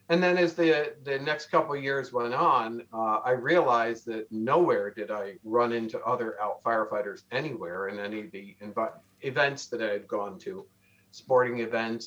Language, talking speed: English, 185 wpm